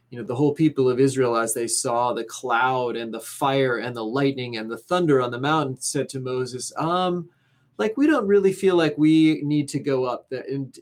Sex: male